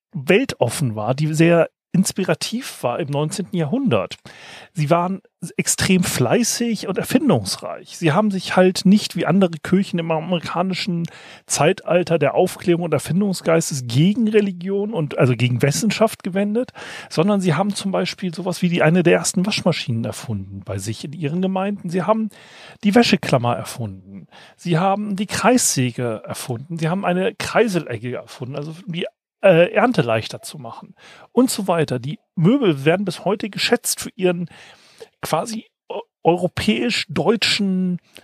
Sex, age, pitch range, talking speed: male, 40-59, 145-195 Hz, 140 wpm